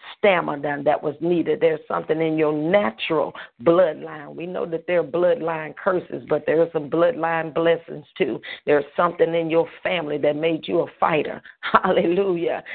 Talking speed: 165 wpm